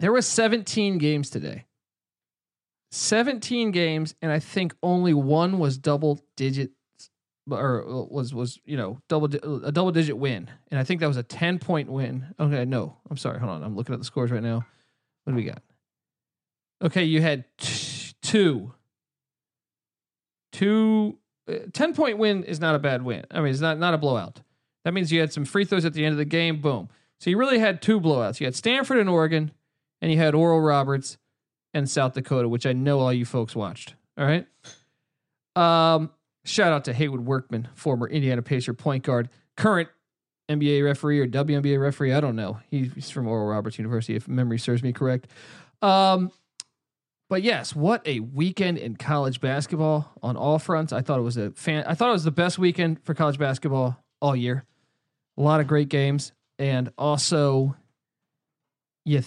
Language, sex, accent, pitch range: English, male, American, 130-165 Hz